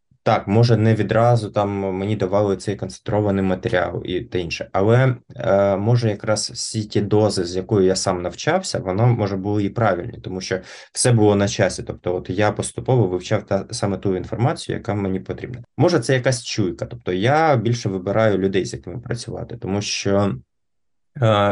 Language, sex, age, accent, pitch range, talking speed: Ukrainian, male, 20-39, native, 95-120 Hz, 175 wpm